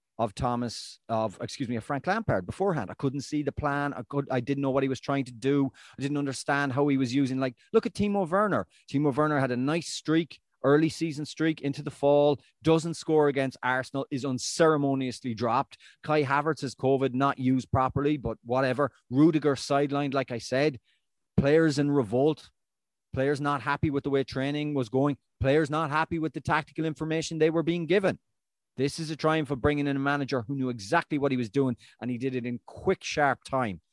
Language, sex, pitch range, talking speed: English, male, 125-150 Hz, 205 wpm